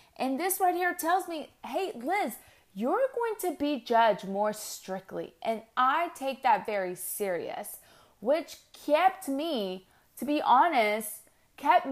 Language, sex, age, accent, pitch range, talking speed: English, female, 30-49, American, 195-270 Hz, 140 wpm